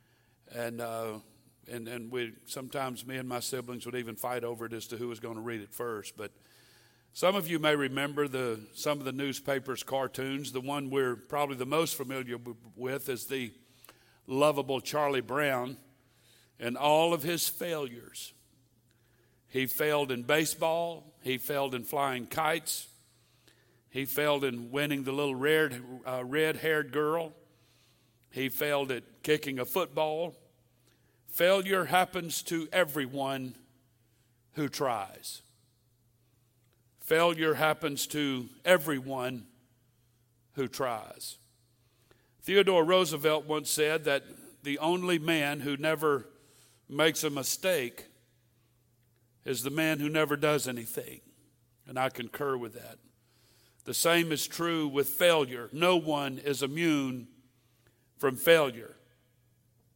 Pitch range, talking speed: 120-150 Hz, 130 wpm